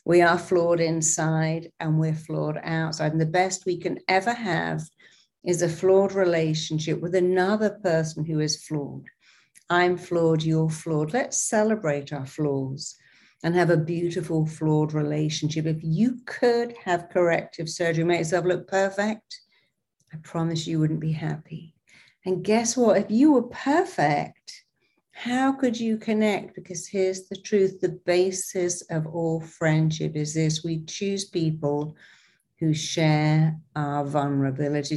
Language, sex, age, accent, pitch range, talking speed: English, female, 50-69, British, 155-185 Hz, 145 wpm